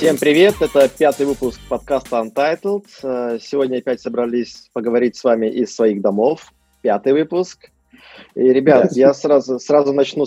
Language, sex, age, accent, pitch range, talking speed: Russian, male, 20-39, native, 120-150 Hz, 140 wpm